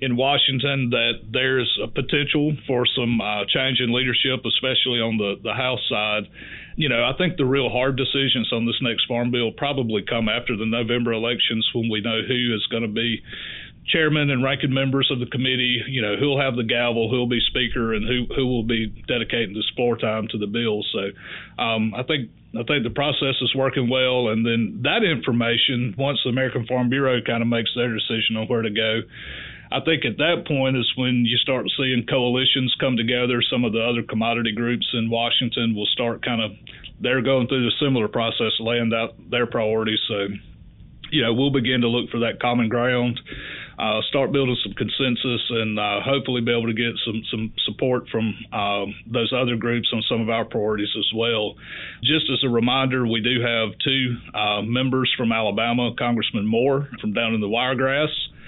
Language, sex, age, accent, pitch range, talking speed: English, male, 30-49, American, 110-130 Hz, 200 wpm